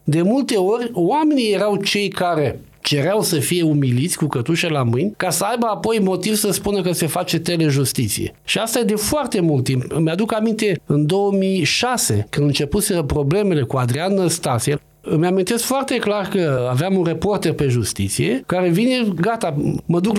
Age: 50-69